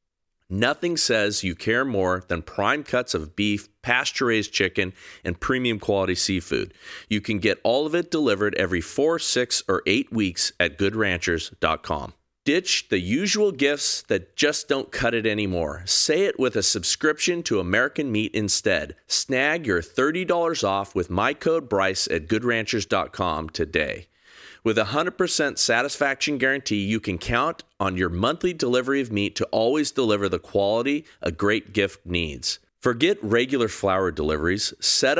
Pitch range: 95-130 Hz